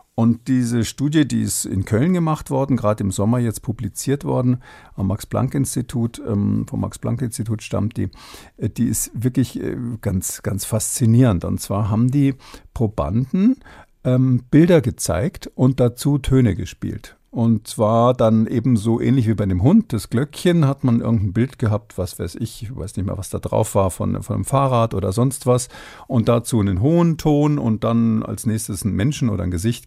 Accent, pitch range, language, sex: German, 105-130 Hz, German, male